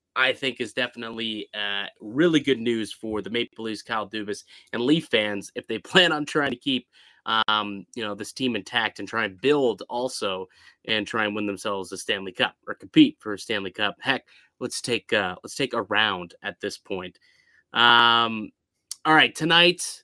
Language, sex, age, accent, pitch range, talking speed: English, male, 30-49, American, 115-150 Hz, 190 wpm